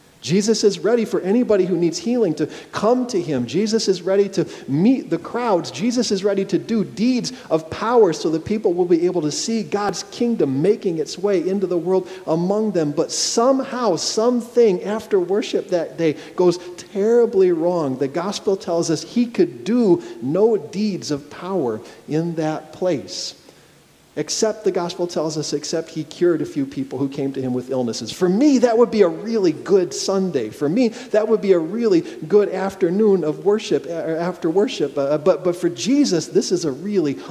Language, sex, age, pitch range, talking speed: English, male, 40-59, 155-215 Hz, 185 wpm